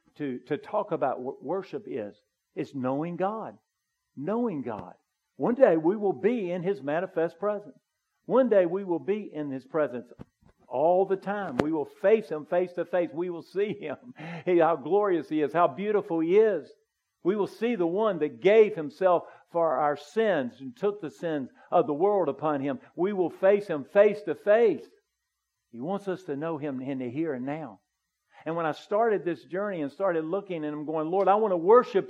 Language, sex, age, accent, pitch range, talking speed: English, male, 50-69, American, 155-205 Hz, 200 wpm